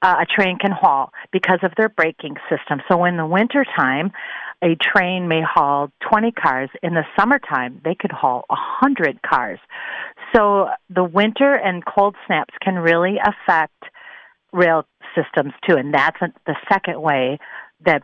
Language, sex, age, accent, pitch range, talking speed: English, female, 40-59, American, 160-195 Hz, 165 wpm